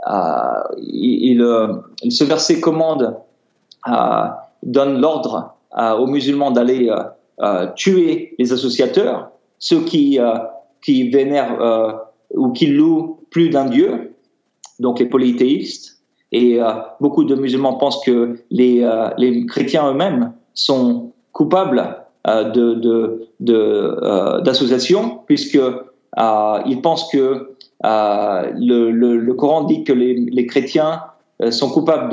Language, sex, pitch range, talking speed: French, male, 120-160 Hz, 130 wpm